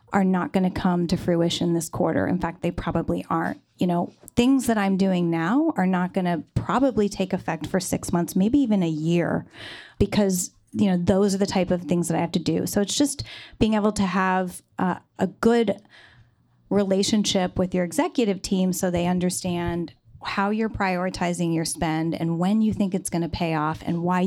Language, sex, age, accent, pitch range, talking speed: English, female, 30-49, American, 180-225 Hz, 200 wpm